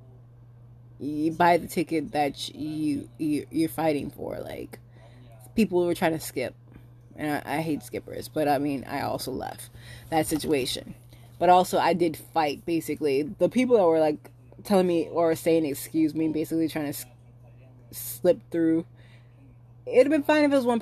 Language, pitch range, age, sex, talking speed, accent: English, 120-170 Hz, 20-39, female, 180 wpm, American